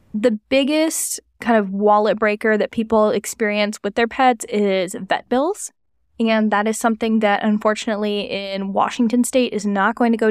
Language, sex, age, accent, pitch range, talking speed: English, female, 10-29, American, 205-240 Hz, 170 wpm